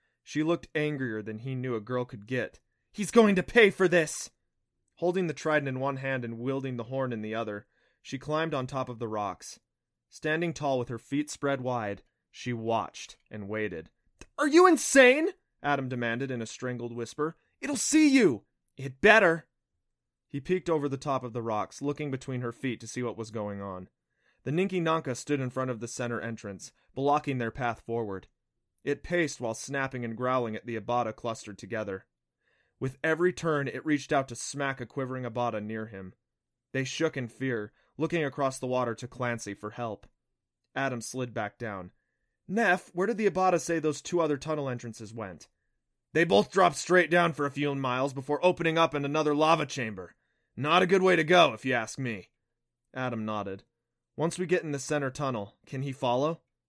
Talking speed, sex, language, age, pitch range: 195 wpm, male, English, 30-49, 115-155 Hz